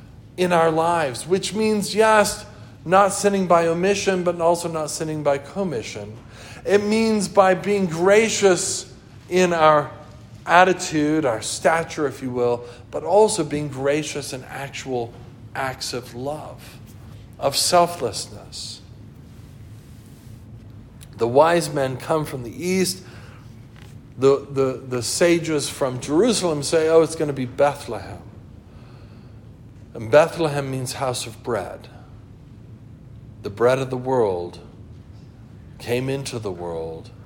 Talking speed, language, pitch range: 120 wpm, English, 115-165 Hz